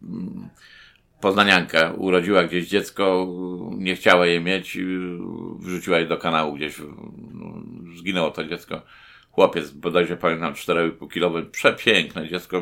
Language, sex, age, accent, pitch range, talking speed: Polish, male, 50-69, native, 85-100 Hz, 110 wpm